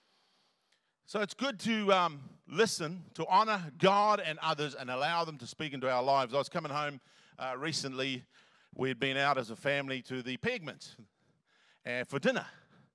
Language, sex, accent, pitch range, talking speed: English, male, Australian, 125-170 Hz, 165 wpm